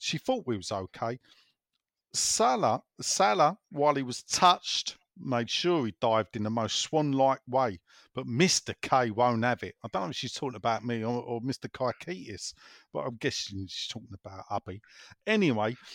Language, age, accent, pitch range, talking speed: English, 50-69, British, 115-155 Hz, 170 wpm